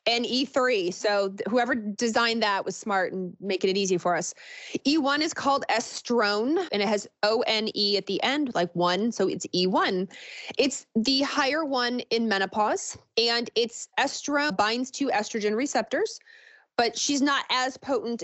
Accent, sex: American, female